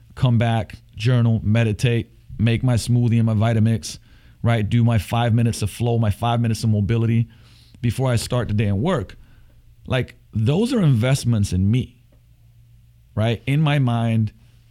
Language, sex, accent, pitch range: English, male, American, 110-120 Hz